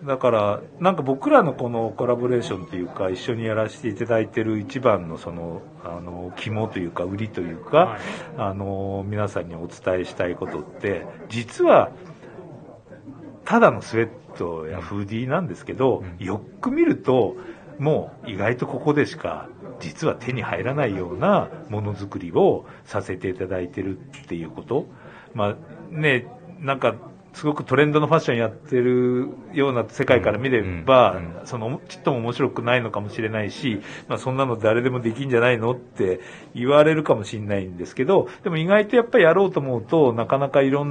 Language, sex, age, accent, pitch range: Japanese, male, 50-69, native, 100-150 Hz